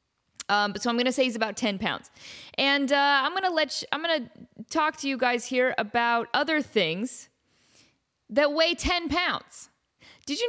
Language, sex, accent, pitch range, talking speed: English, female, American, 220-305 Hz, 200 wpm